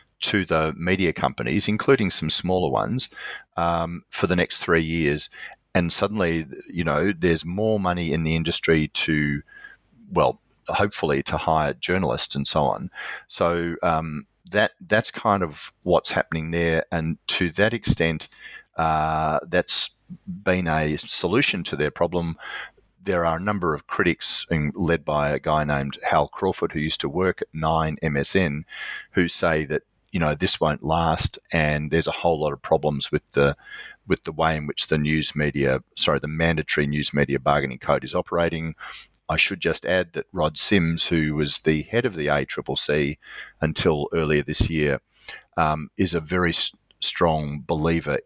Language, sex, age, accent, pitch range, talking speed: English, male, 40-59, Australian, 75-85 Hz, 165 wpm